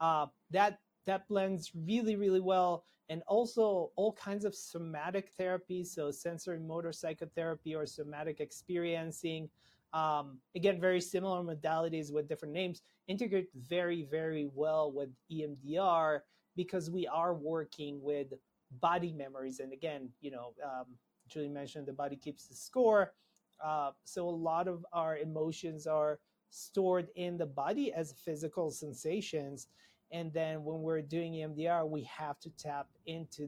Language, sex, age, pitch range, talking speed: English, male, 30-49, 145-175 Hz, 145 wpm